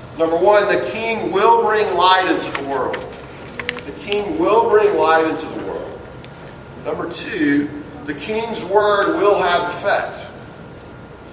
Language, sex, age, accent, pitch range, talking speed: English, male, 40-59, American, 170-235 Hz, 145 wpm